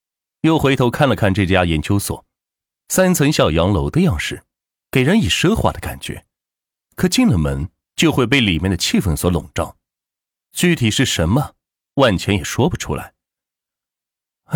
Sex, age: male, 30-49